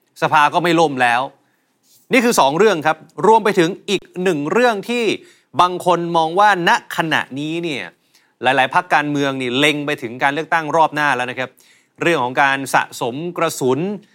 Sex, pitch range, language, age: male, 140-185 Hz, Thai, 30-49